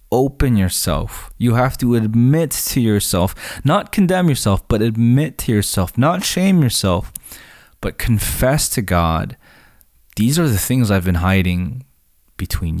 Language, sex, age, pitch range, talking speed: English, male, 20-39, 90-120 Hz, 140 wpm